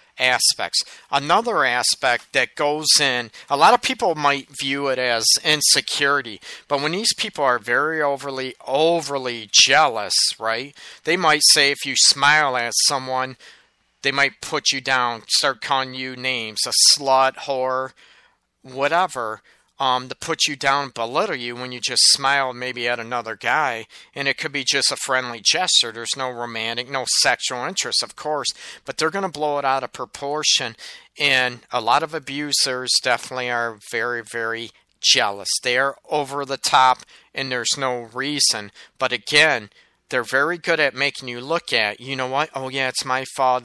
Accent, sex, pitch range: American, male, 125-145 Hz